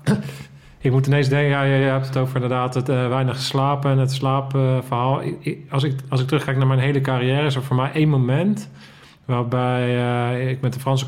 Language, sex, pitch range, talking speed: Dutch, male, 120-135 Hz, 210 wpm